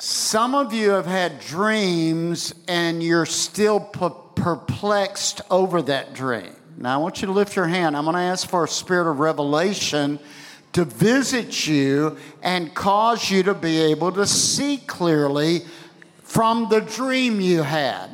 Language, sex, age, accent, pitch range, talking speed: English, male, 60-79, American, 160-215 Hz, 155 wpm